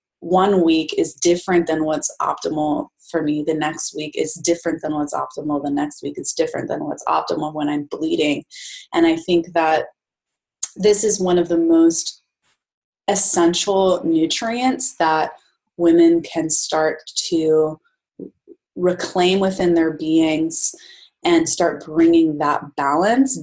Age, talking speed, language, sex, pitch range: 20-39, 140 wpm, English, female, 150-190 Hz